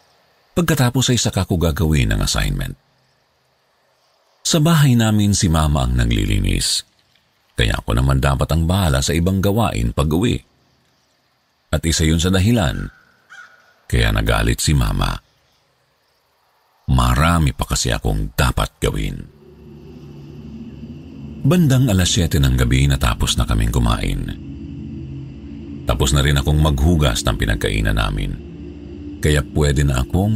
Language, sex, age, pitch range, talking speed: Filipino, male, 50-69, 70-110 Hz, 120 wpm